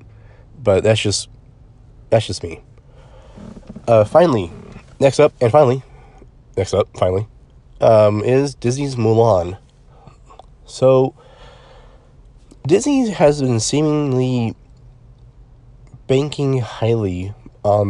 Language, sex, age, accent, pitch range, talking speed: English, male, 30-49, American, 105-125 Hz, 90 wpm